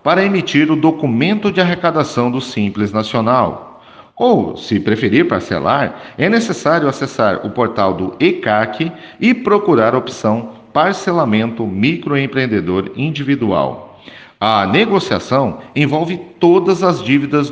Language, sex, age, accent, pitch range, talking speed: Portuguese, male, 50-69, Brazilian, 115-170 Hz, 115 wpm